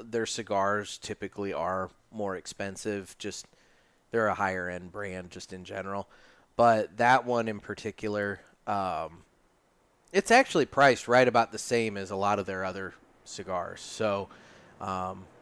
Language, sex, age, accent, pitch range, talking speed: English, male, 30-49, American, 105-125 Hz, 145 wpm